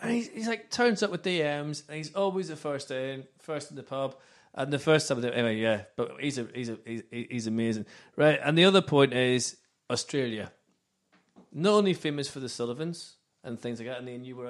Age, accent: 30-49, British